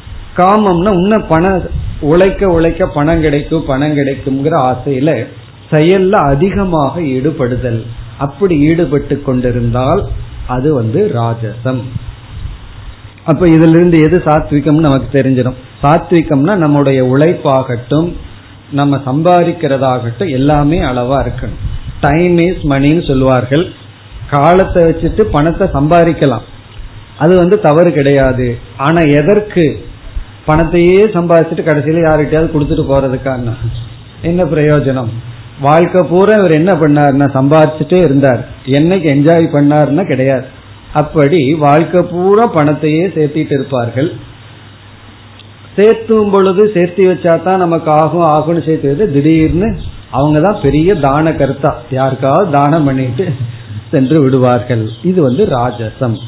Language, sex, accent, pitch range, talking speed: Tamil, male, native, 125-165 Hz, 70 wpm